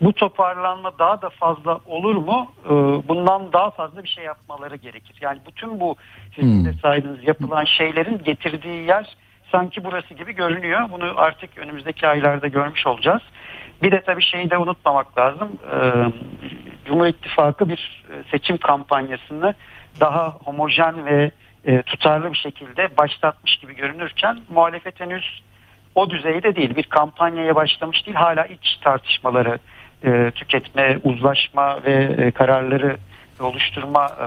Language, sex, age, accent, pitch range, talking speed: Turkish, male, 60-79, native, 130-170 Hz, 125 wpm